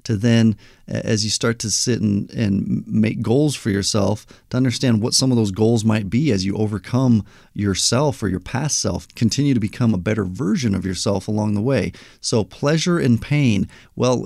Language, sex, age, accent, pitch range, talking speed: English, male, 40-59, American, 100-120 Hz, 195 wpm